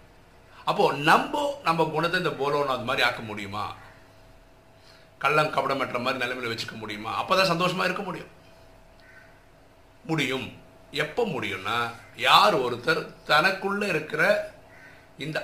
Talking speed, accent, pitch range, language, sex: 110 wpm, native, 110-160 Hz, Tamil, male